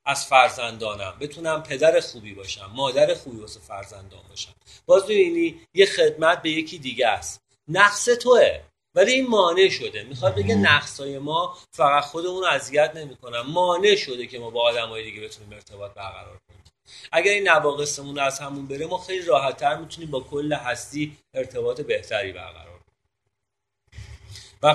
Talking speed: 155 wpm